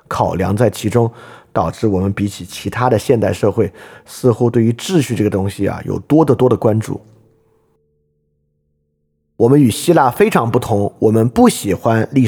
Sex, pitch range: male, 100-145 Hz